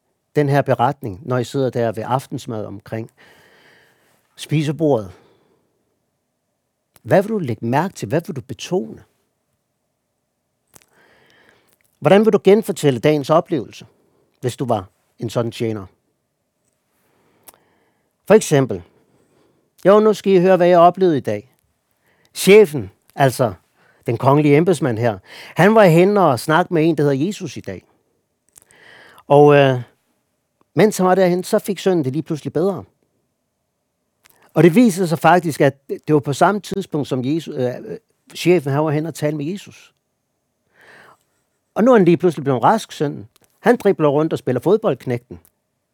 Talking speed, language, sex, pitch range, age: 145 wpm, Danish, male, 130-190 Hz, 60-79